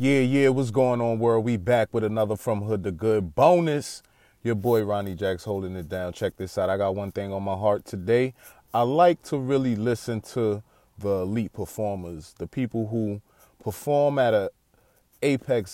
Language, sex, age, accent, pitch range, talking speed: English, male, 30-49, American, 95-125 Hz, 185 wpm